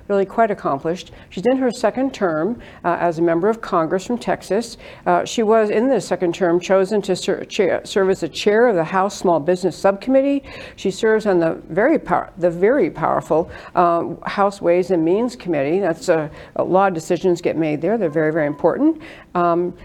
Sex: female